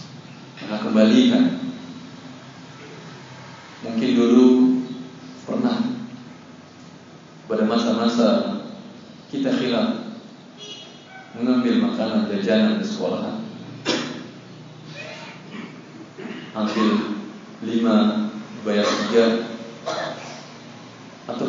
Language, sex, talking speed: Indonesian, male, 55 wpm